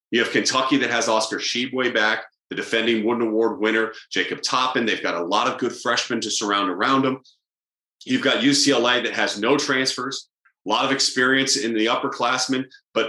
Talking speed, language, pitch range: 190 wpm, English, 110-145 Hz